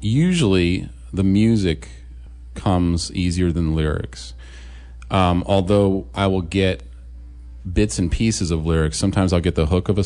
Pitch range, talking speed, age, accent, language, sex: 70-90 Hz, 150 wpm, 40-59, American, English, male